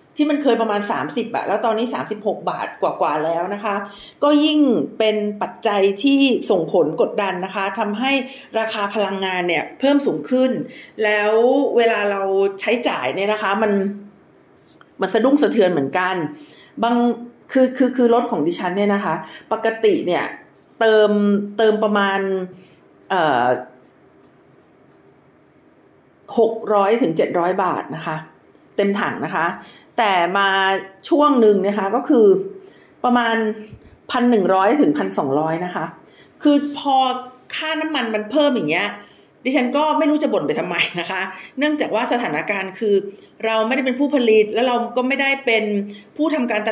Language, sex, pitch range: Thai, female, 195-255 Hz